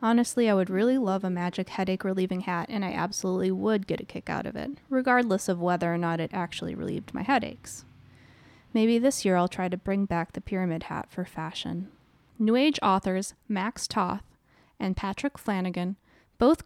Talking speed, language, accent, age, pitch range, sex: 185 wpm, English, American, 10-29, 185-225 Hz, female